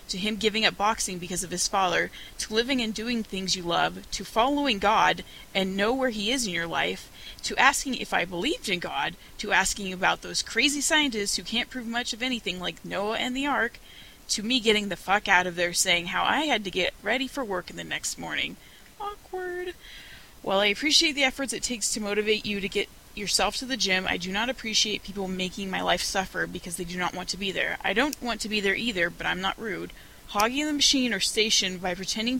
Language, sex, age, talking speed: English, female, 20-39, 230 wpm